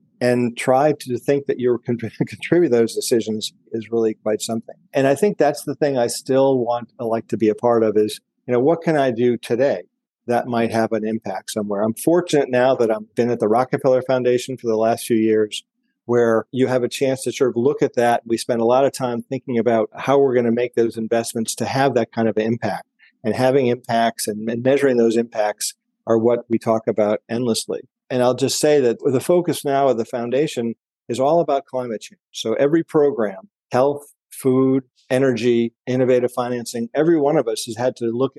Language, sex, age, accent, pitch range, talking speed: English, male, 50-69, American, 115-135 Hz, 215 wpm